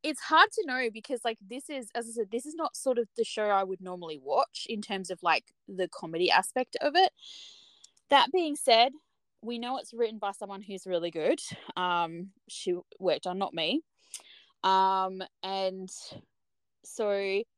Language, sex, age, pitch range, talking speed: English, female, 20-39, 185-260 Hz, 180 wpm